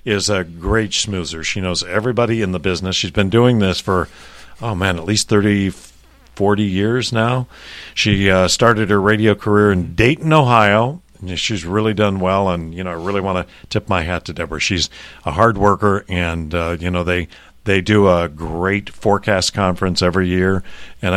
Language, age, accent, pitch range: English, 50-69, American, 90-115 Hz